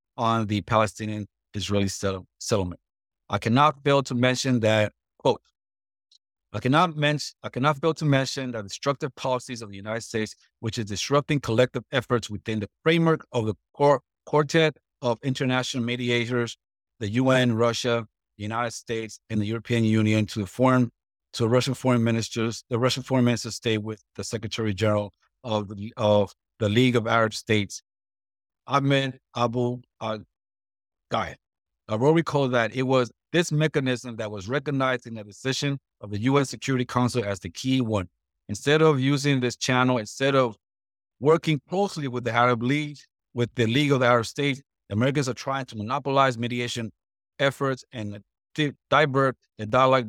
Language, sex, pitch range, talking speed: English, male, 110-135 Hz, 165 wpm